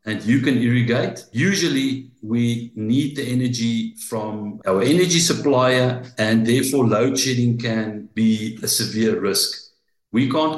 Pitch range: 110-135 Hz